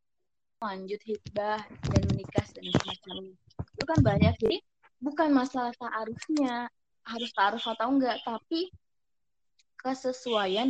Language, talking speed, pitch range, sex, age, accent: Indonesian, 110 wpm, 205-265 Hz, female, 20-39, native